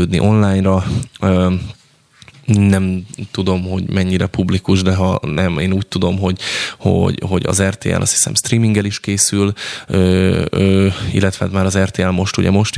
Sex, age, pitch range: male, 20-39, 95-110 Hz